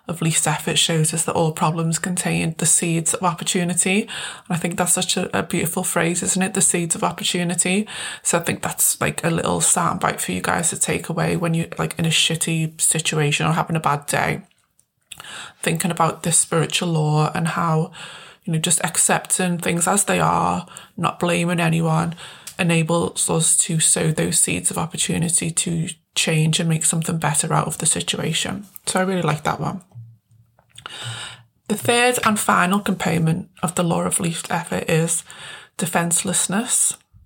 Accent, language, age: British, English, 20-39